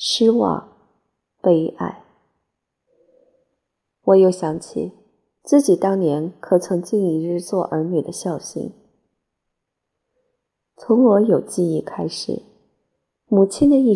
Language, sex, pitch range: Chinese, female, 170-225 Hz